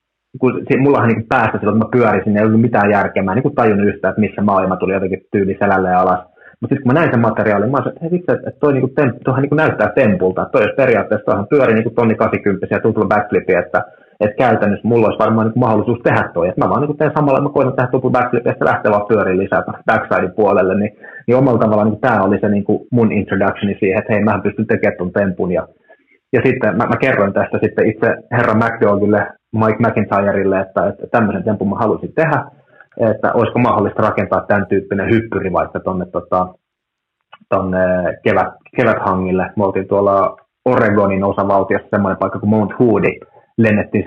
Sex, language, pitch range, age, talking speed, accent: male, Finnish, 100-120 Hz, 30-49, 175 wpm, native